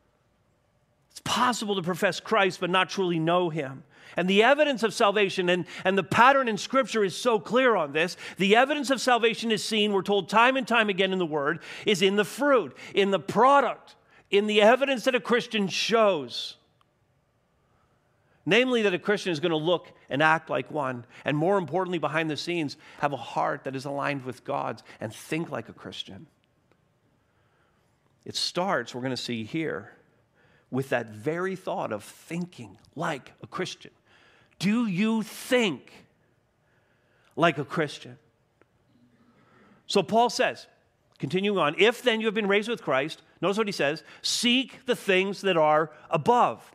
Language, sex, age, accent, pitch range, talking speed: English, male, 50-69, American, 150-220 Hz, 165 wpm